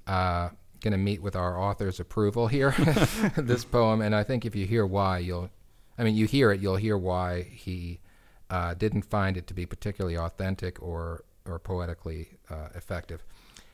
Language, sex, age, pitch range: English, male, 40-59, 95-120 Hz